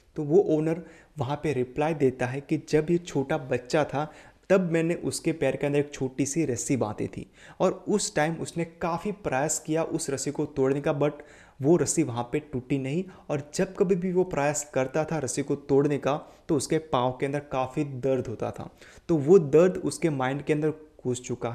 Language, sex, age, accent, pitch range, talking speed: Hindi, male, 30-49, native, 130-165 Hz, 205 wpm